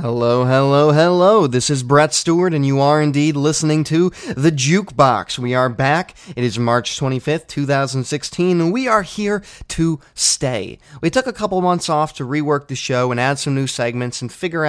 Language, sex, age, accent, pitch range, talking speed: English, male, 30-49, American, 120-155 Hz, 190 wpm